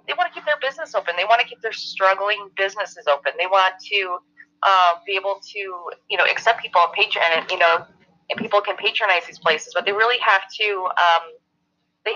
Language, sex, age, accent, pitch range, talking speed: English, female, 20-39, American, 170-210 Hz, 205 wpm